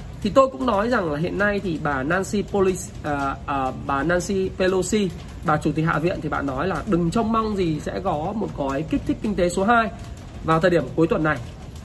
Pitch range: 160-225 Hz